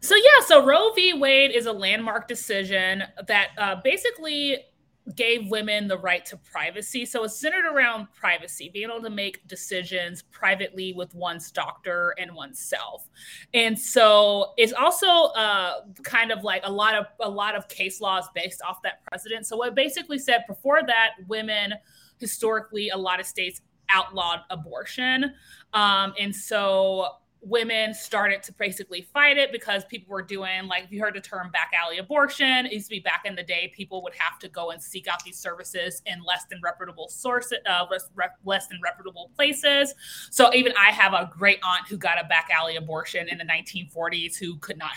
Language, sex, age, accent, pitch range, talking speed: English, female, 30-49, American, 185-235 Hz, 180 wpm